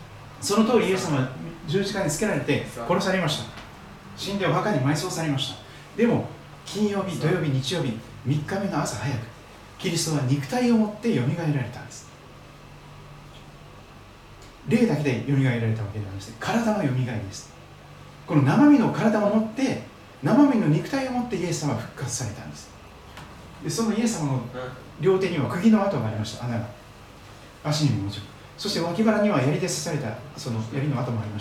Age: 40-59